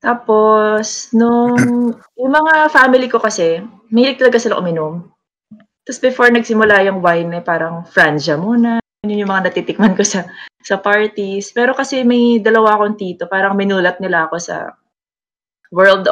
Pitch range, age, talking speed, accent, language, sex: 175-225 Hz, 20-39, 140 wpm, native, Filipino, female